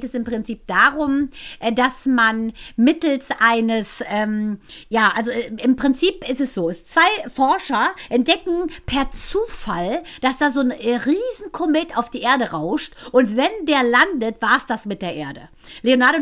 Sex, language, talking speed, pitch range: female, German, 150 wpm, 230-285 Hz